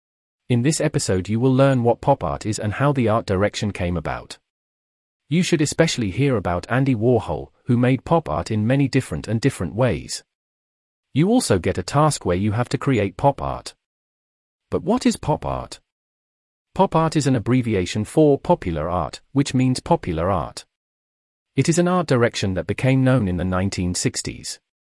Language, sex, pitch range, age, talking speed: Danish, male, 90-140 Hz, 40-59, 180 wpm